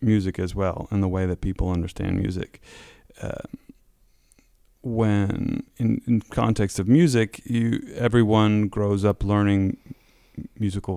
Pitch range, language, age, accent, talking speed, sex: 95-115 Hz, English, 30-49, American, 125 wpm, male